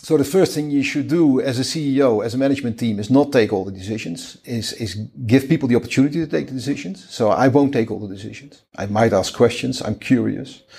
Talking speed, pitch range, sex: 240 wpm, 110-140 Hz, male